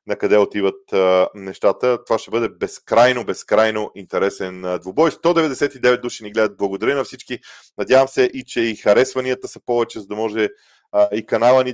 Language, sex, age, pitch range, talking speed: Bulgarian, male, 20-39, 105-135 Hz, 175 wpm